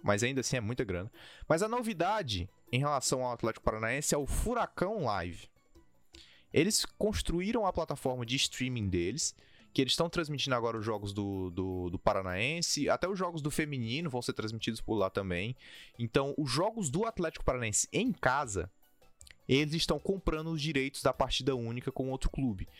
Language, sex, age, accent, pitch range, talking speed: Portuguese, male, 20-39, Brazilian, 110-160 Hz, 170 wpm